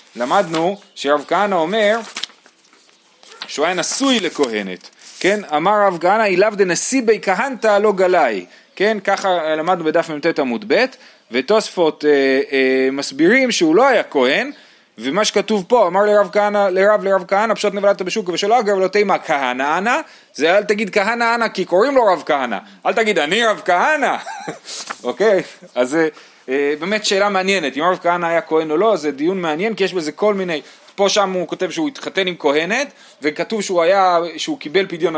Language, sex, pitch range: Hebrew, male, 165-215 Hz